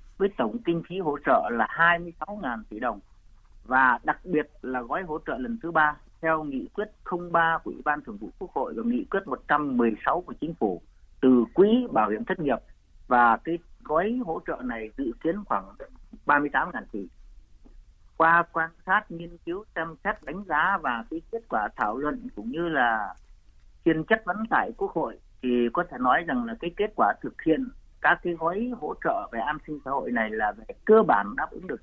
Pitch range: 145-210 Hz